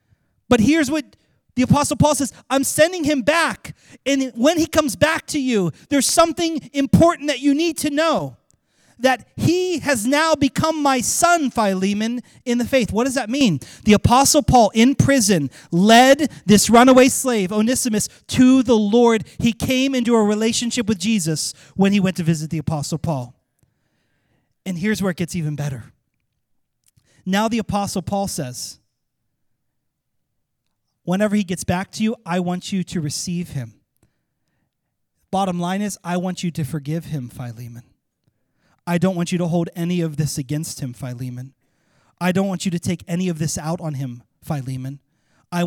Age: 30-49